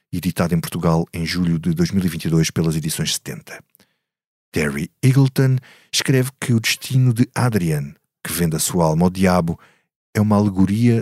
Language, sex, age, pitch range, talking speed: Portuguese, male, 50-69, 90-135 Hz, 150 wpm